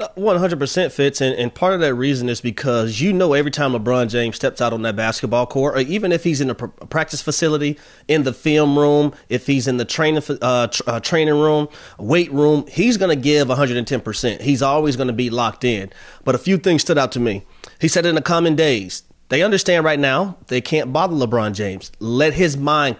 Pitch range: 125-165 Hz